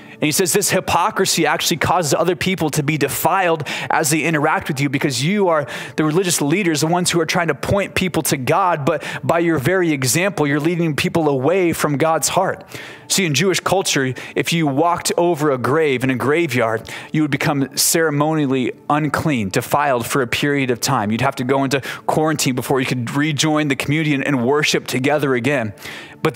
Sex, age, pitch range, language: male, 20-39, 130-160 Hz, English